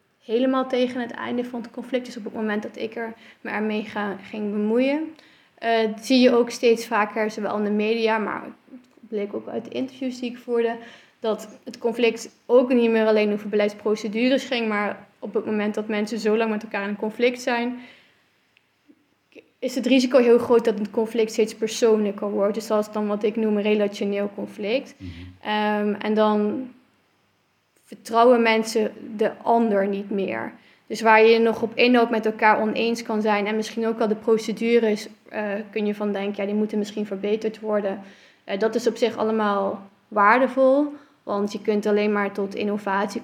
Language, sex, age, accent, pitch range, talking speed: Dutch, female, 20-39, Dutch, 210-240 Hz, 185 wpm